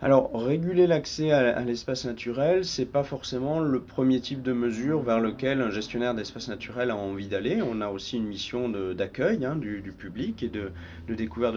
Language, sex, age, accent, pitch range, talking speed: French, male, 40-59, French, 105-130 Hz, 195 wpm